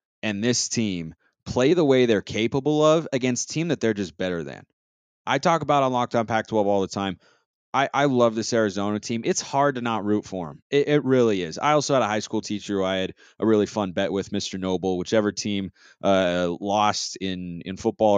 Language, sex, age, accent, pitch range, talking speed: English, male, 30-49, American, 100-125 Hz, 220 wpm